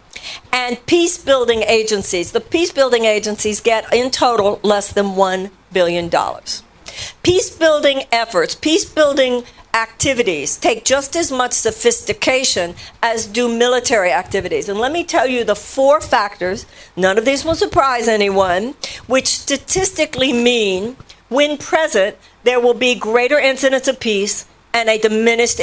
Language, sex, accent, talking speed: English, female, American, 130 wpm